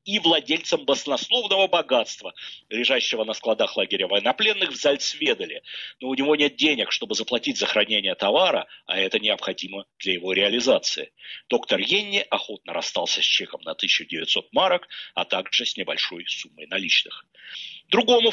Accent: native